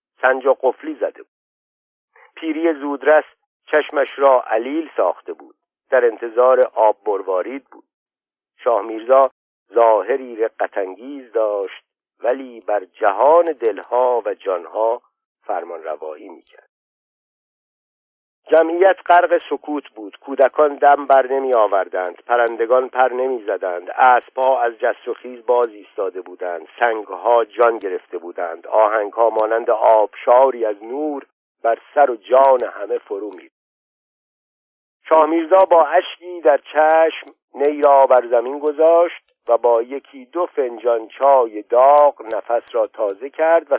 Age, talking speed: 50-69, 120 wpm